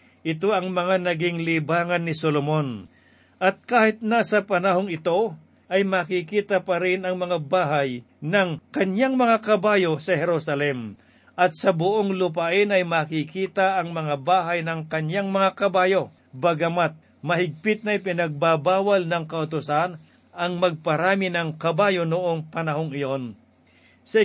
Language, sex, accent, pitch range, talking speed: Filipino, male, native, 160-195 Hz, 130 wpm